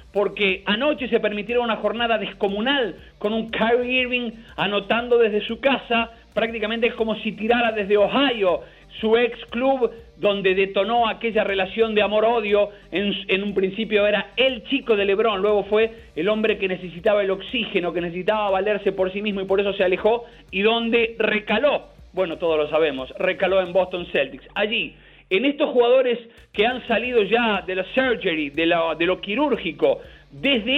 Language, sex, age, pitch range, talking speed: Spanish, male, 40-59, 195-235 Hz, 170 wpm